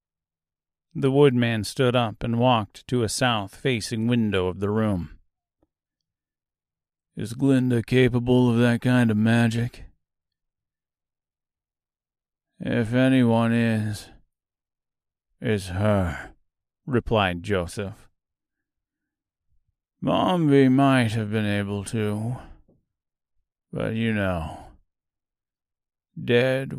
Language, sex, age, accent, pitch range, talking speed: English, male, 40-59, American, 90-120 Hz, 85 wpm